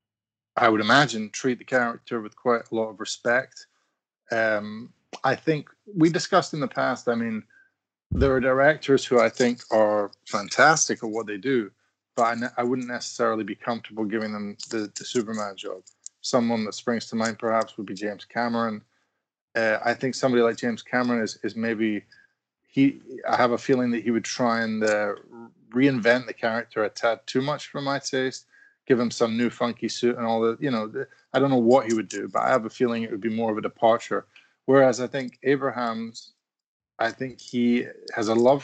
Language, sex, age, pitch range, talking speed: English, male, 20-39, 115-135 Hz, 200 wpm